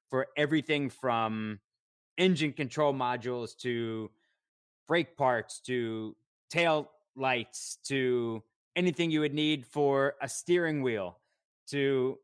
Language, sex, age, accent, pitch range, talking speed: English, male, 30-49, American, 115-145 Hz, 110 wpm